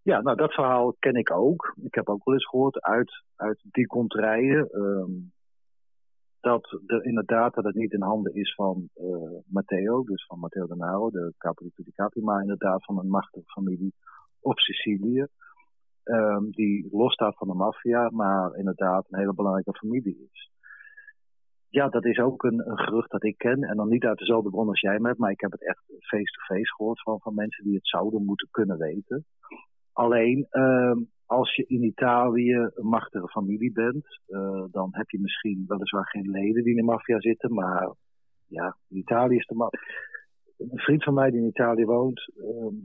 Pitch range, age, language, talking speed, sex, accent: 100-125 Hz, 40-59, Dutch, 180 wpm, male, Dutch